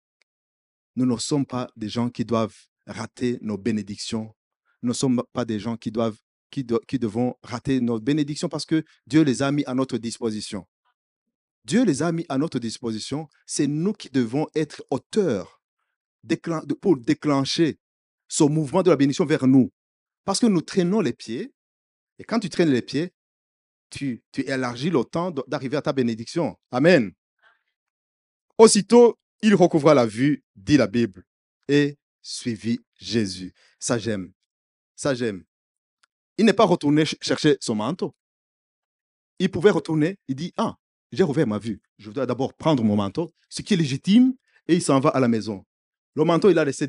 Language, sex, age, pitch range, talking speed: French, male, 50-69, 115-160 Hz, 170 wpm